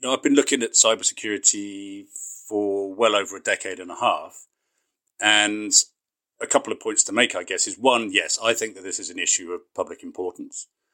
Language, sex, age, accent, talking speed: English, male, 40-59, British, 195 wpm